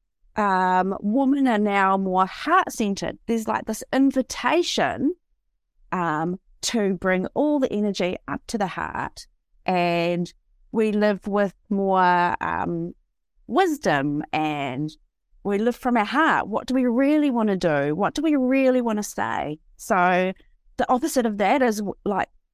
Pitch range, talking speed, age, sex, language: 180-230 Hz, 145 wpm, 30-49, female, English